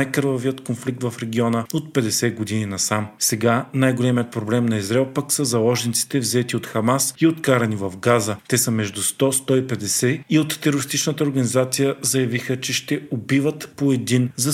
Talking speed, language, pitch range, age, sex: 155 wpm, Bulgarian, 115-135 Hz, 40-59, male